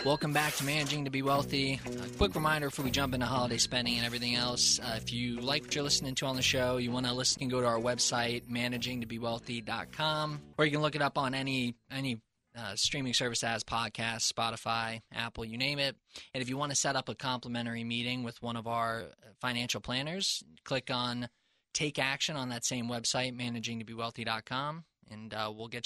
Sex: male